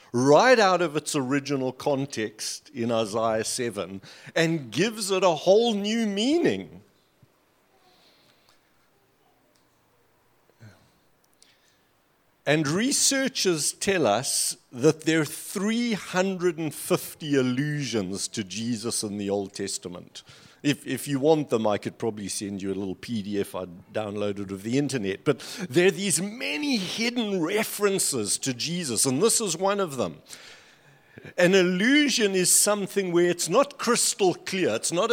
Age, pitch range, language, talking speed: 60-79, 125-195 Hz, English, 130 wpm